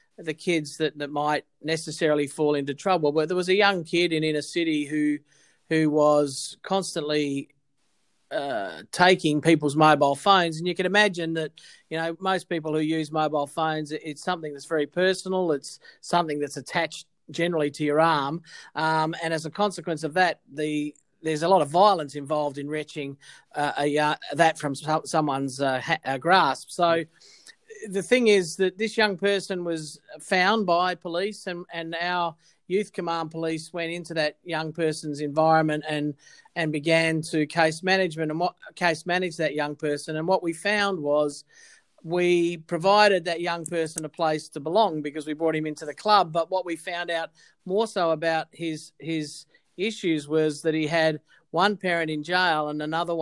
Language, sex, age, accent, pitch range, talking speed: English, male, 40-59, Australian, 150-175 Hz, 175 wpm